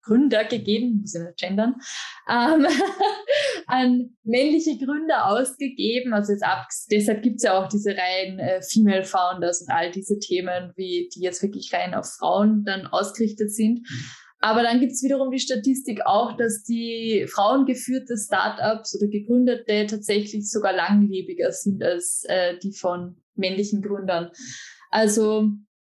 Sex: female